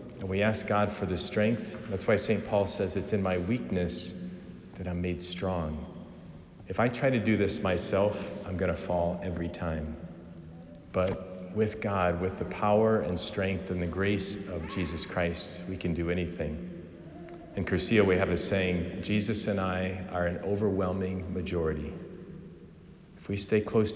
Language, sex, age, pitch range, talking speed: English, male, 40-59, 90-100 Hz, 170 wpm